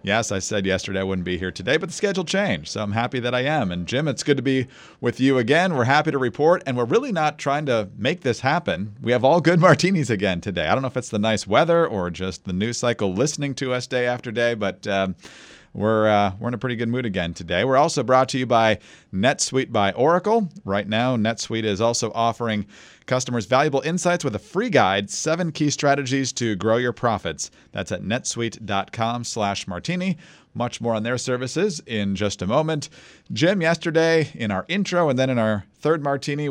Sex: male